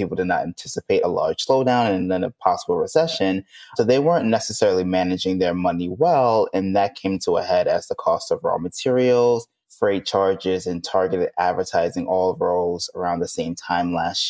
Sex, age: male, 20-39